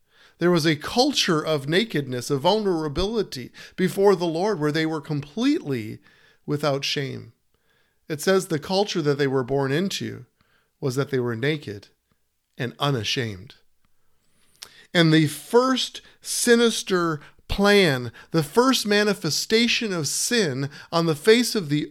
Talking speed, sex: 130 wpm, male